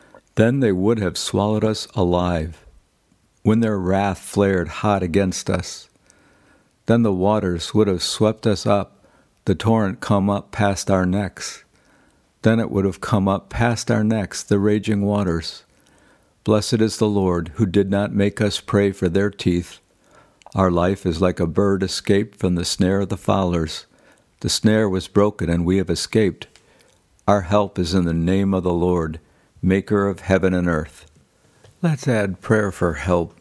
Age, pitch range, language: 60-79, 85-105 Hz, English